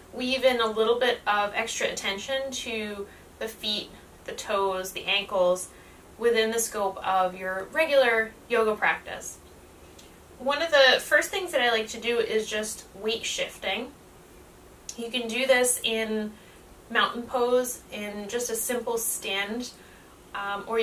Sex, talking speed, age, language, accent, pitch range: female, 145 wpm, 20-39, English, American, 205-240 Hz